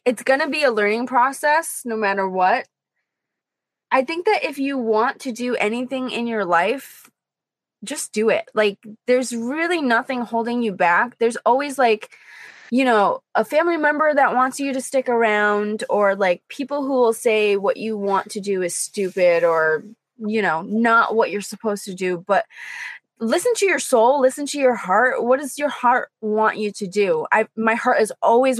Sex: female